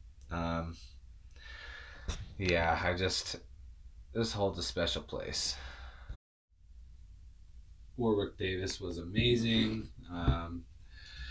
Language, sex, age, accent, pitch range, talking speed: English, male, 20-39, American, 85-100 Hz, 75 wpm